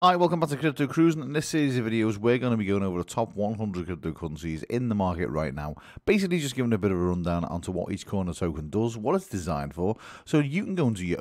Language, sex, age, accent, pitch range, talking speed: English, male, 30-49, British, 90-140 Hz, 285 wpm